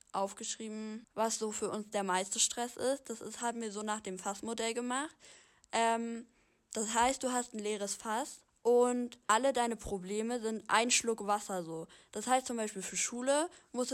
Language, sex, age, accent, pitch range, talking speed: German, female, 10-29, German, 200-235 Hz, 180 wpm